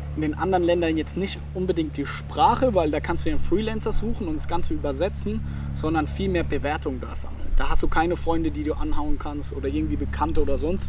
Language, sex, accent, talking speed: German, male, German, 225 wpm